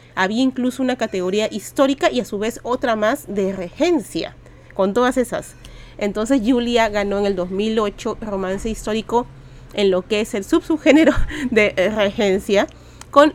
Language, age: Spanish, 30-49